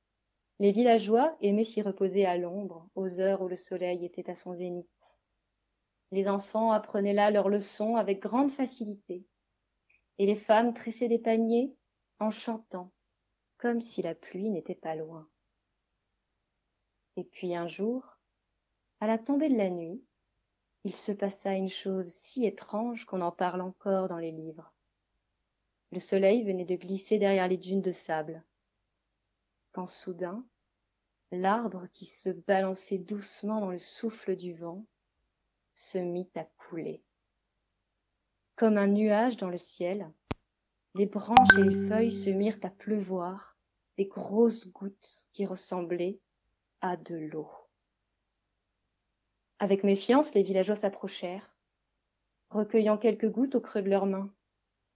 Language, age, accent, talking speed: French, 30-49, French, 140 wpm